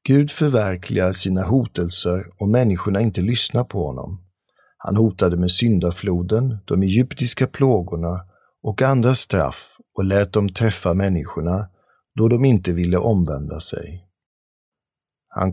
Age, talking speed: 50-69, 125 wpm